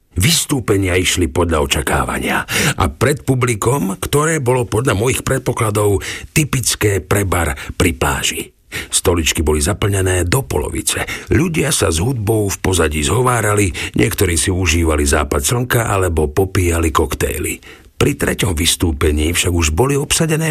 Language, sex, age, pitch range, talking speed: Slovak, male, 50-69, 85-120 Hz, 125 wpm